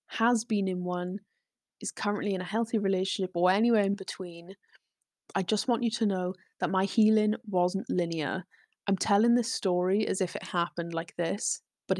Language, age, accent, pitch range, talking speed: English, 10-29, British, 185-220 Hz, 180 wpm